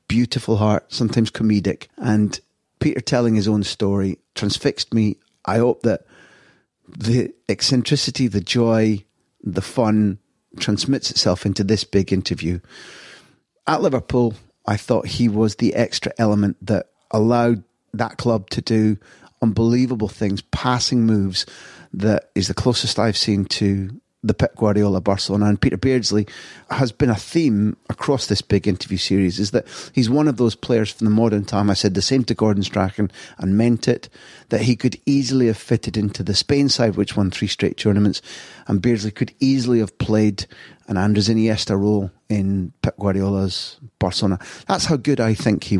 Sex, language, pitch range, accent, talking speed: male, English, 100-120 Hz, British, 165 wpm